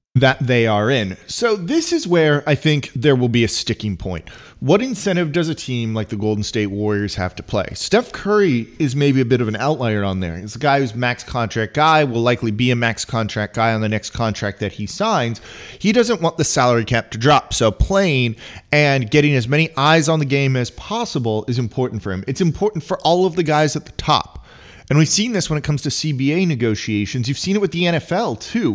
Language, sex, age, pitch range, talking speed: English, male, 30-49, 110-155 Hz, 235 wpm